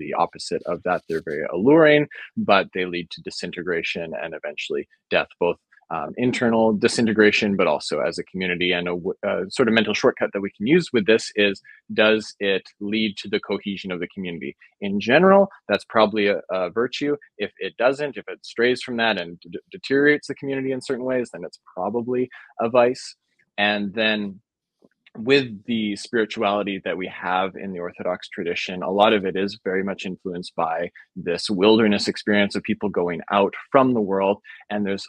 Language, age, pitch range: English, 20-39, 95-120 Hz